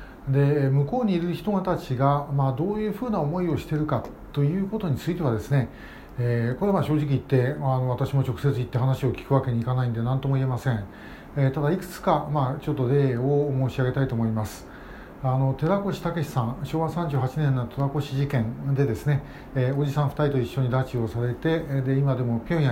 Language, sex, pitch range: Japanese, male, 125-150 Hz